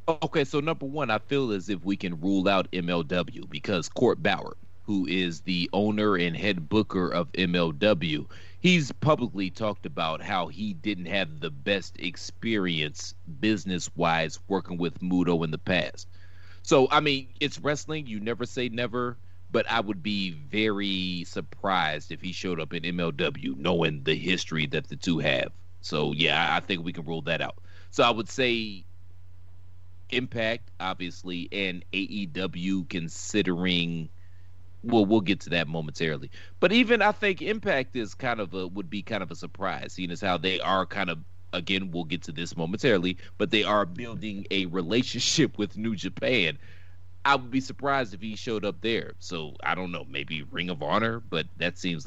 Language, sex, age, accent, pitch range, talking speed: English, male, 30-49, American, 90-110 Hz, 175 wpm